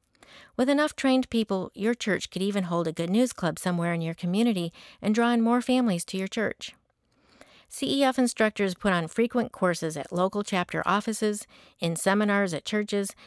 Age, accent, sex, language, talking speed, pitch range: 50-69, American, female, English, 175 wpm, 175-230 Hz